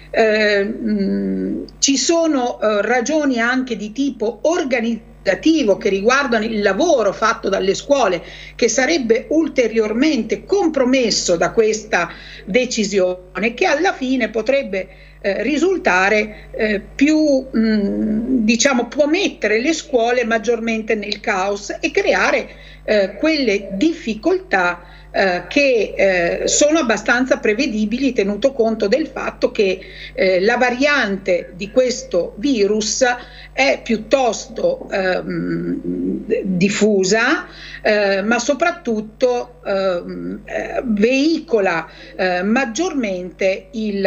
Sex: female